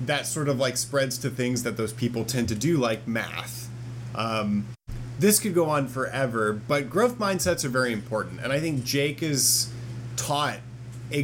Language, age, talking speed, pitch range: English, 30-49, 180 wpm, 120-140 Hz